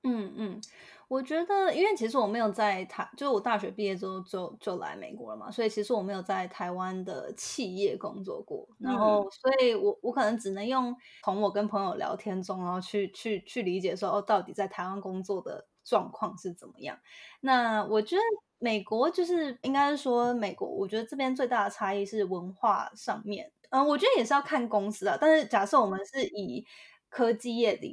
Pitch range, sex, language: 195-255 Hz, female, Chinese